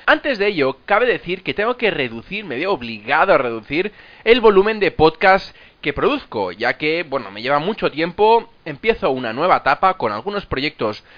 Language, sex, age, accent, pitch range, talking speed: Spanish, male, 20-39, Spanish, 145-220 Hz, 185 wpm